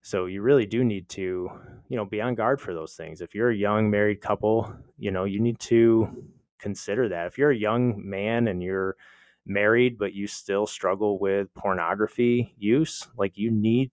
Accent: American